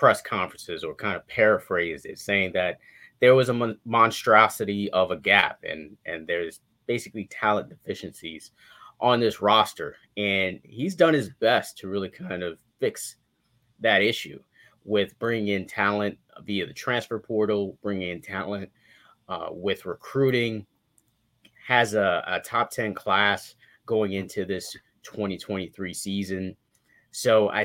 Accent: American